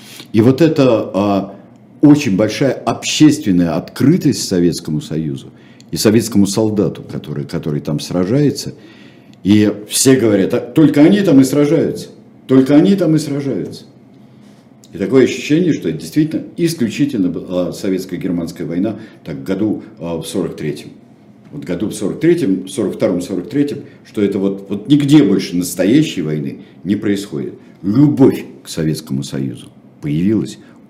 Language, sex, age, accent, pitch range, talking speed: Russian, male, 50-69, native, 85-140 Hz, 130 wpm